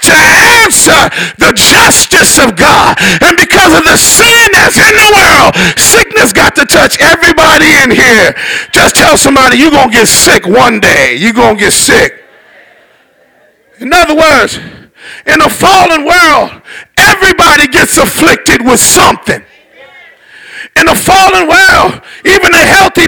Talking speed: 140 wpm